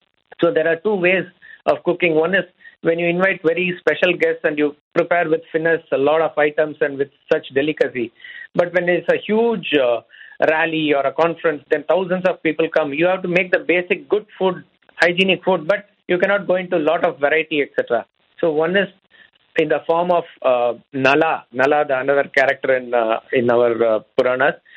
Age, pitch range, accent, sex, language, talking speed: 50-69, 145-185 Hz, native, male, Hindi, 195 wpm